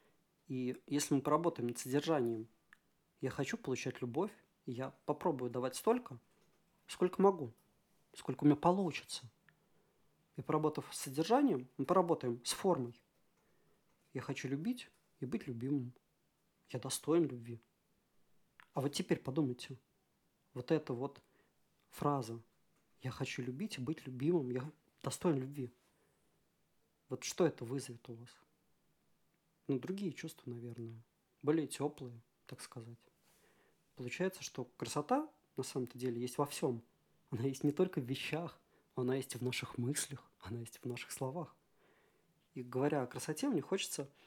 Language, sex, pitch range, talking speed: Russian, male, 125-160 Hz, 150 wpm